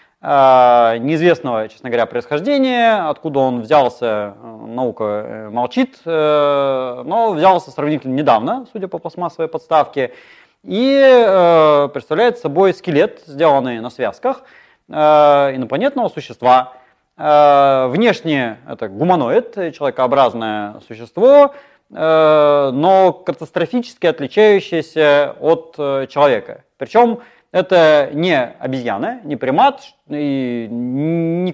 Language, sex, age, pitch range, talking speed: Russian, male, 30-49, 140-210 Hz, 85 wpm